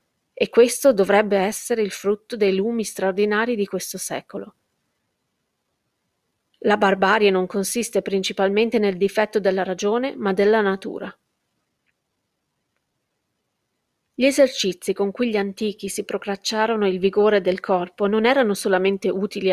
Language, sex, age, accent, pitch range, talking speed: Italian, female, 30-49, native, 195-230 Hz, 125 wpm